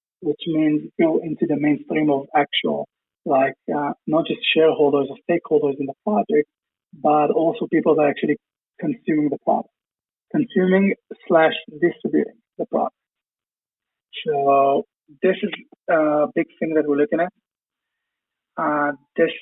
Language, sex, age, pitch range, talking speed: English, male, 30-49, 145-170 Hz, 135 wpm